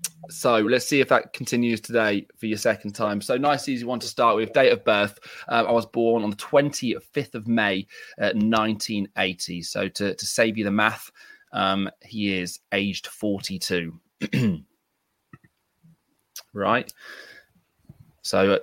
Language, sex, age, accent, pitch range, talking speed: English, male, 20-39, British, 95-140 Hz, 150 wpm